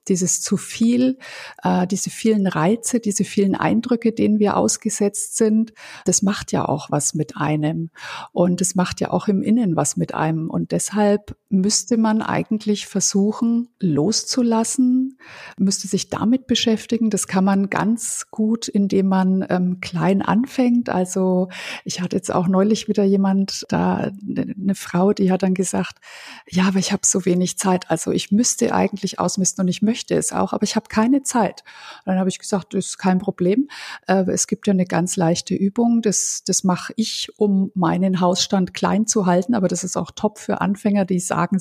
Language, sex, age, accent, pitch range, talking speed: German, female, 50-69, German, 185-220 Hz, 180 wpm